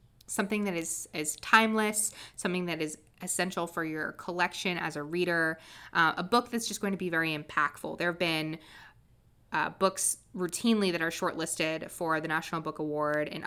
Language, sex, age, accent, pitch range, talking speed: English, female, 20-39, American, 155-190 Hz, 180 wpm